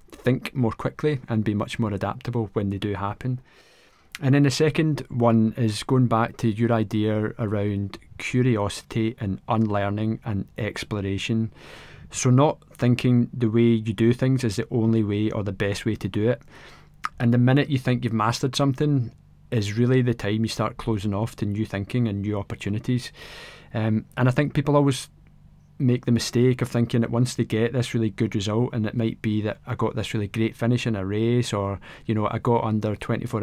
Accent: British